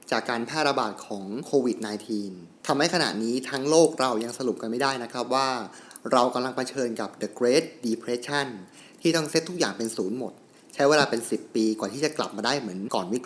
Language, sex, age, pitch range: Thai, male, 20-39, 115-150 Hz